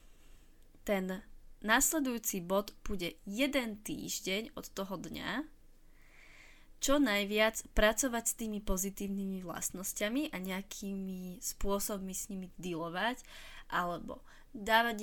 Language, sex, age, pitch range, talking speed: Slovak, female, 20-39, 190-220 Hz, 95 wpm